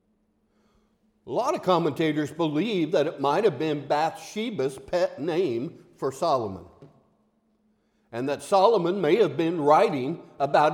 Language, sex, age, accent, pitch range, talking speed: English, male, 60-79, American, 155-220 Hz, 130 wpm